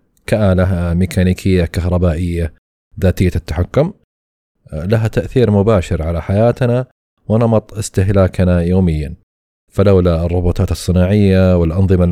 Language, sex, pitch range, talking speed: Arabic, male, 90-105 Hz, 85 wpm